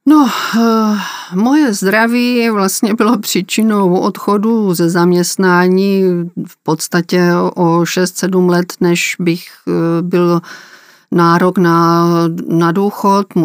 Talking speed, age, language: 95 wpm, 40-59, Czech